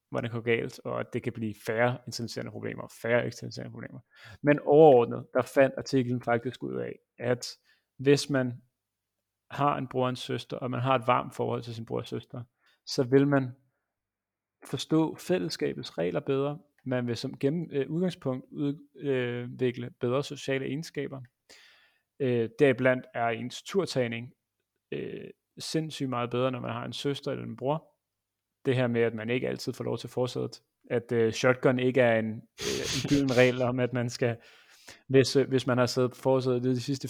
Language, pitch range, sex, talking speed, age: Danish, 120-140 Hz, male, 180 wpm, 30-49